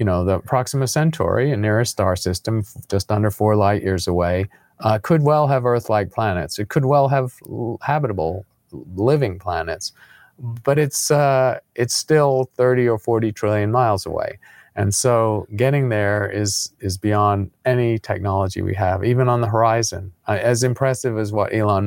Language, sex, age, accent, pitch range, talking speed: English, male, 40-59, American, 95-125 Hz, 165 wpm